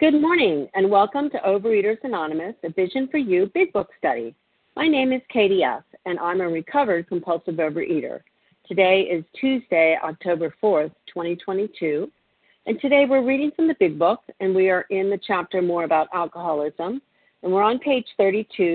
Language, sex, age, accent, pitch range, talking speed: English, female, 50-69, American, 160-205 Hz, 170 wpm